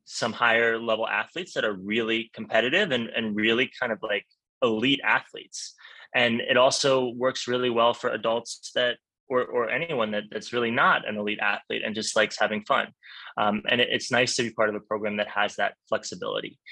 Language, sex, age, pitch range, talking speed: English, male, 20-39, 105-120 Hz, 190 wpm